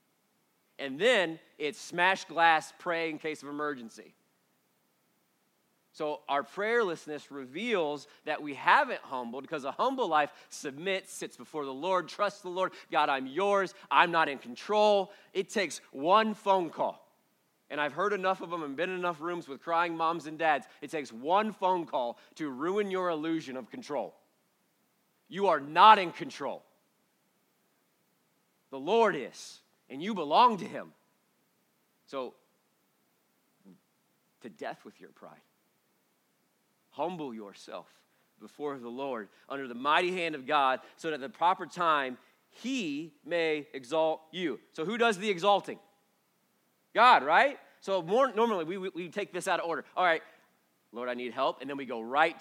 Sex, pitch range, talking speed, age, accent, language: male, 145-195 Hz, 155 wpm, 40-59, American, English